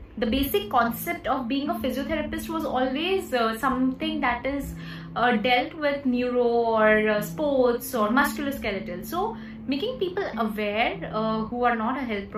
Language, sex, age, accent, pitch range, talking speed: English, female, 20-39, Indian, 220-280 Hz, 155 wpm